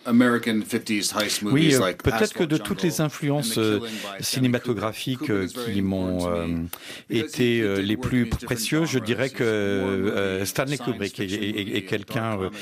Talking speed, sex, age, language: 100 wpm, male, 50-69, French